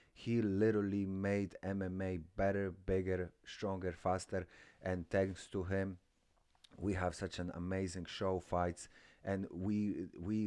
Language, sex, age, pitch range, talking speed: English, male, 30-49, 85-100 Hz, 125 wpm